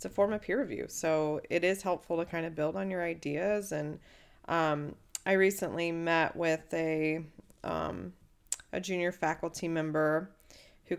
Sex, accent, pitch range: female, American, 150-175 Hz